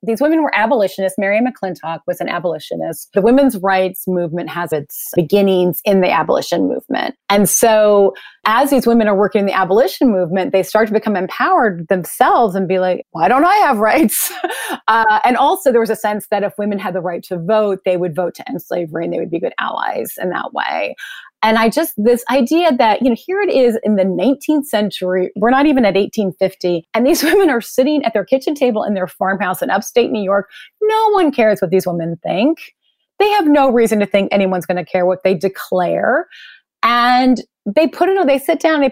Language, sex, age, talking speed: English, female, 30-49, 215 wpm